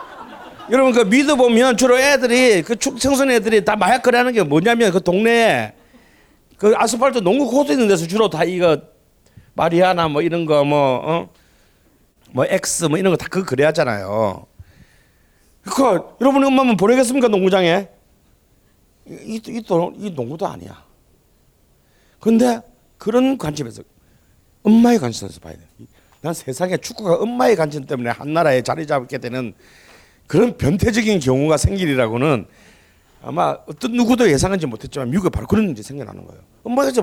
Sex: male